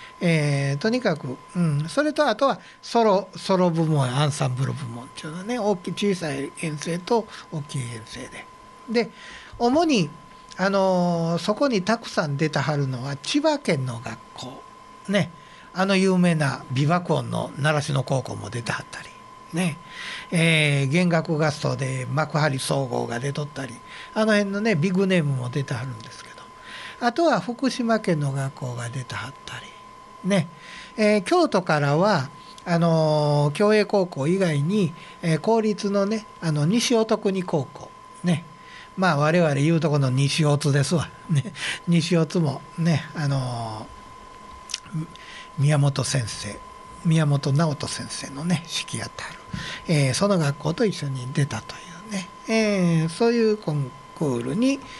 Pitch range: 145-205 Hz